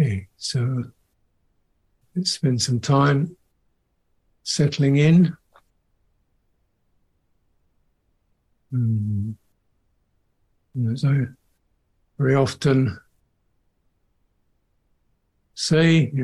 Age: 60-79